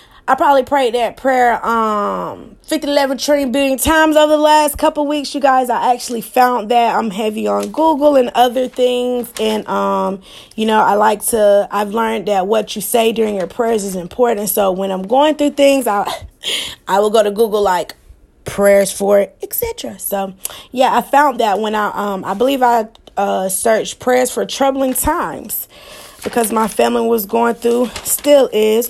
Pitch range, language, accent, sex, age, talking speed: 200-255 Hz, English, American, female, 20-39, 185 wpm